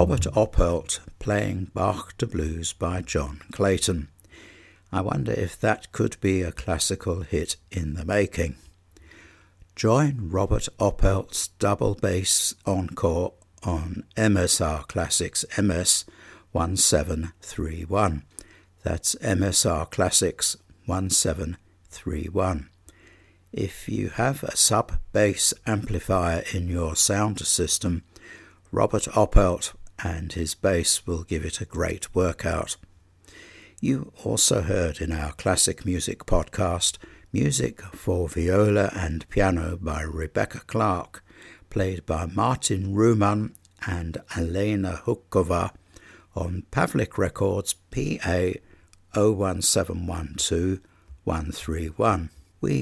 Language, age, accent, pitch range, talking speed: English, 60-79, British, 85-100 Hz, 95 wpm